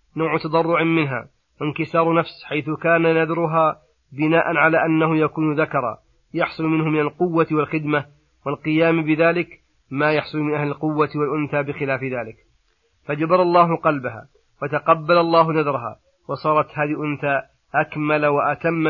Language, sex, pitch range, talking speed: Arabic, male, 145-160 Hz, 125 wpm